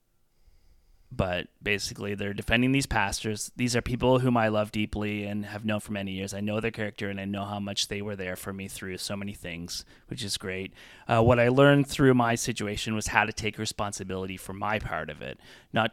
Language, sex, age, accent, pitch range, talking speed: English, male, 30-49, American, 95-115 Hz, 220 wpm